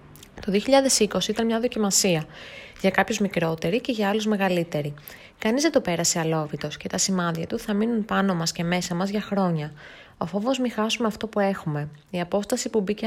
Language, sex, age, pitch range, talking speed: Greek, female, 20-39, 180-225 Hz, 190 wpm